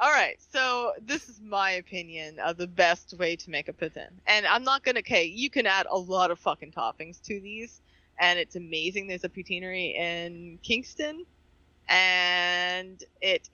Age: 20-39